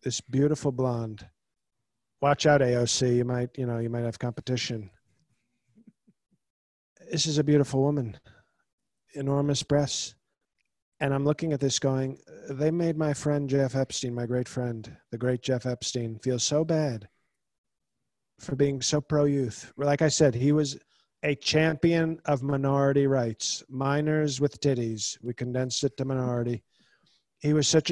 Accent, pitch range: American, 125-150 Hz